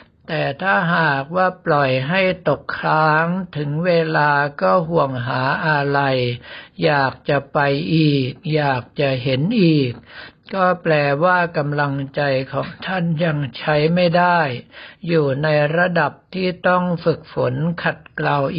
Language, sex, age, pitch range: Thai, male, 60-79, 140-170 Hz